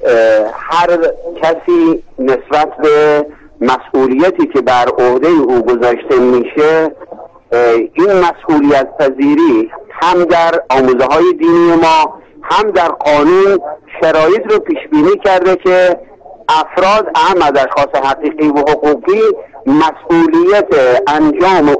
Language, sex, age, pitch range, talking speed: Persian, male, 50-69, 150-240 Hz, 100 wpm